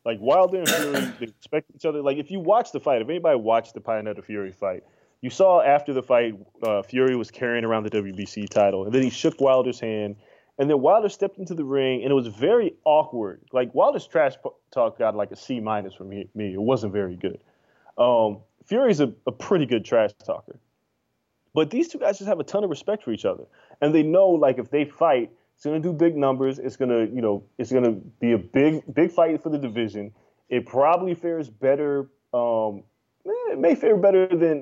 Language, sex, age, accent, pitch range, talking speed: English, male, 20-39, American, 115-170 Hz, 220 wpm